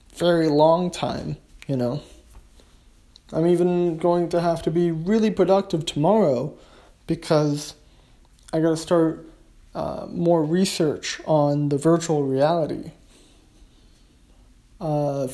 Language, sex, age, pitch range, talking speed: English, male, 20-39, 135-175 Hz, 105 wpm